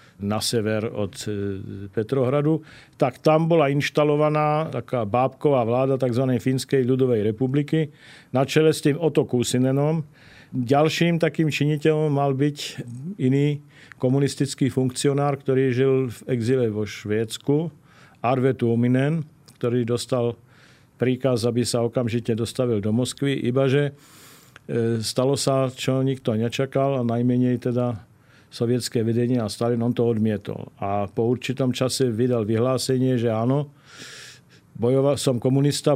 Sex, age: male, 50-69